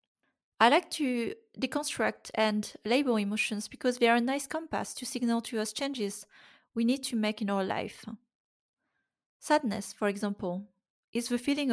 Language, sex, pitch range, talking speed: English, female, 205-250 Hz, 160 wpm